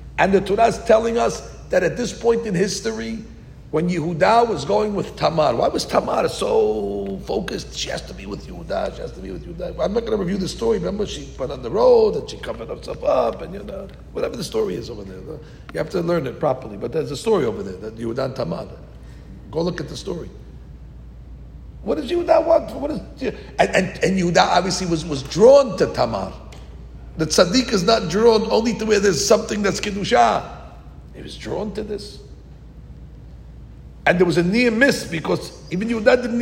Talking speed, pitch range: 210 wpm, 140-225 Hz